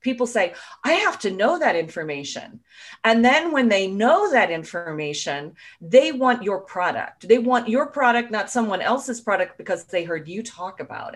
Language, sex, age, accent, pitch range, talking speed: English, female, 40-59, American, 180-255 Hz, 175 wpm